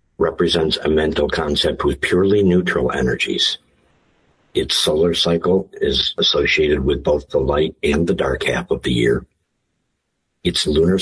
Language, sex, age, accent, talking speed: English, male, 60-79, American, 140 wpm